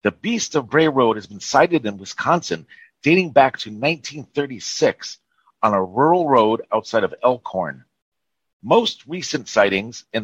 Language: English